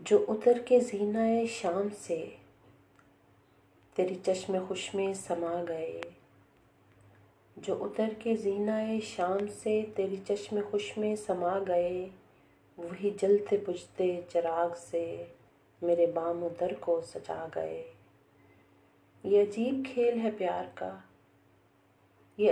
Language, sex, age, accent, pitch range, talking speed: English, female, 30-49, Pakistani, 170-210 Hz, 110 wpm